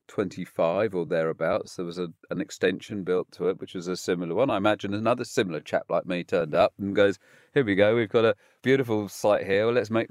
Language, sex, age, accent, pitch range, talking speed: English, male, 40-59, British, 85-110 Hz, 230 wpm